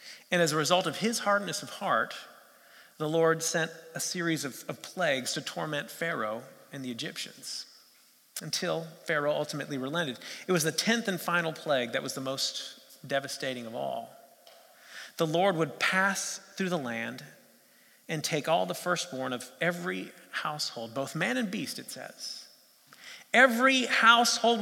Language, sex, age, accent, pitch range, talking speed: English, male, 40-59, American, 155-205 Hz, 155 wpm